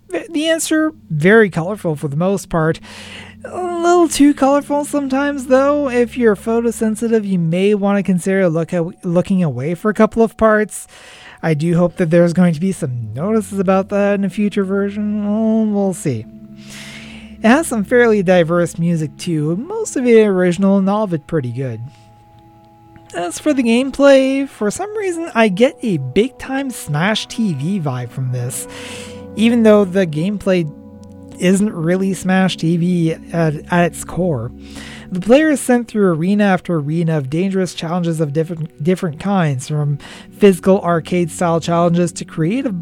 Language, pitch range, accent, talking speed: English, 165-220 Hz, American, 160 wpm